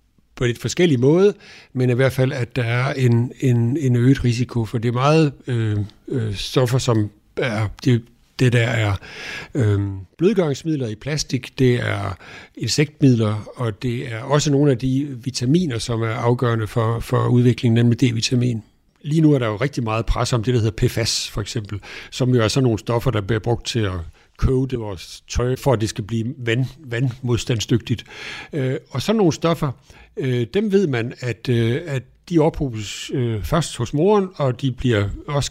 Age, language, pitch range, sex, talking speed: 60-79, Danish, 115-140 Hz, male, 190 wpm